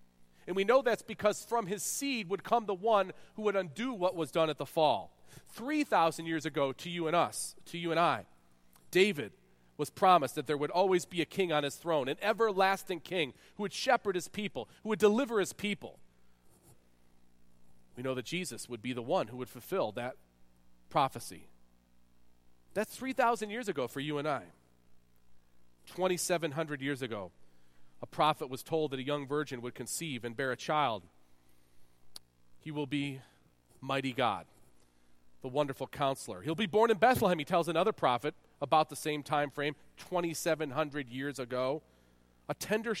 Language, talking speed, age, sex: English, 170 wpm, 40-59, male